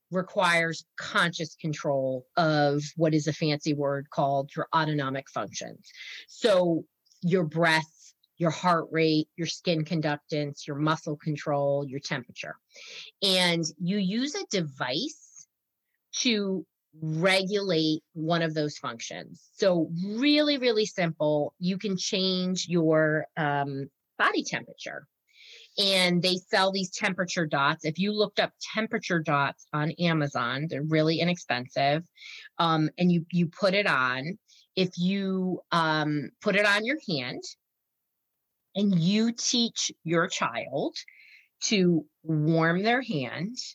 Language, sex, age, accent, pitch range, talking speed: English, female, 30-49, American, 155-195 Hz, 125 wpm